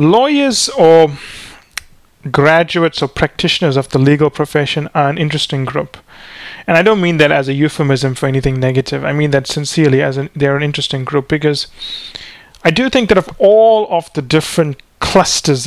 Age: 30-49